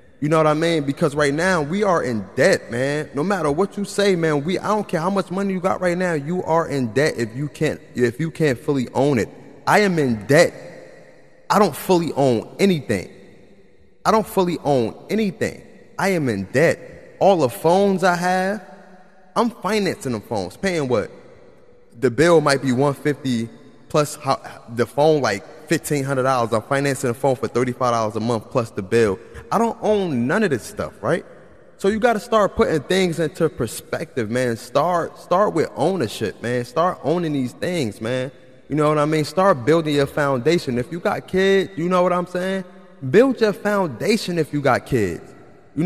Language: English